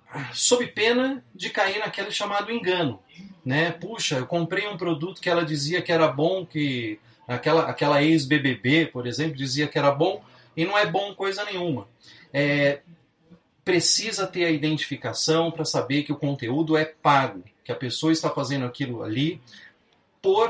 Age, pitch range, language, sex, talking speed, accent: 40-59, 145-195 Hz, Portuguese, male, 160 wpm, Brazilian